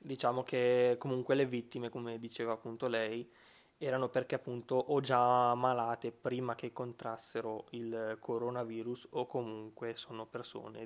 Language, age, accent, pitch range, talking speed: Italian, 20-39, native, 115-130 Hz, 135 wpm